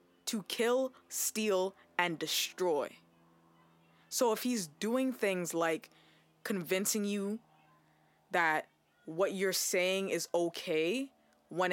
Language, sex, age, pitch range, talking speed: English, female, 20-39, 160-195 Hz, 100 wpm